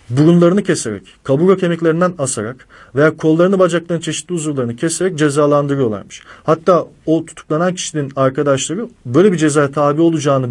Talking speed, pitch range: 125 wpm, 125-165 Hz